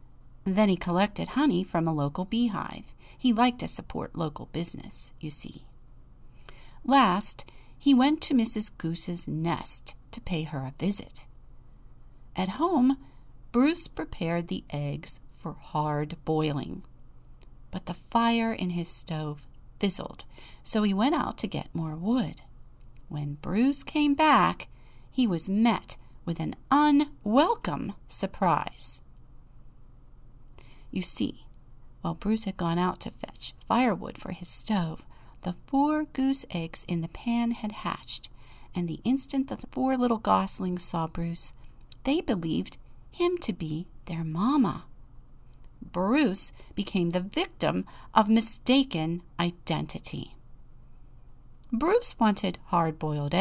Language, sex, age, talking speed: English, female, 50-69, 125 wpm